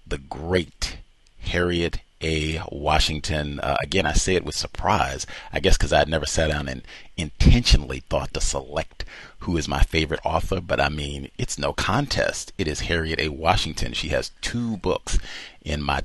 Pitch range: 75-90 Hz